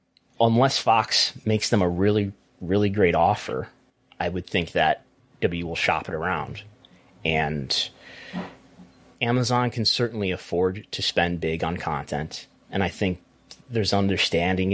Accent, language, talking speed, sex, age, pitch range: American, English, 135 wpm, male, 30-49, 85-110 Hz